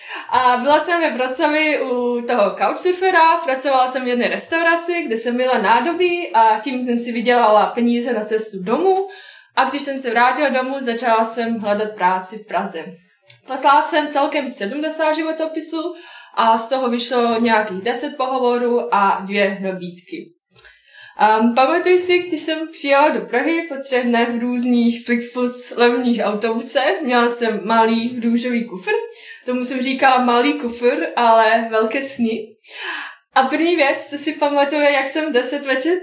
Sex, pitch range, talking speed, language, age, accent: female, 230-295 Hz, 150 wpm, Czech, 20-39, native